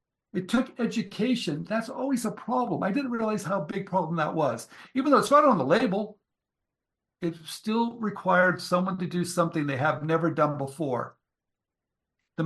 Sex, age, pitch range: male, 60-79, 155-195 Hz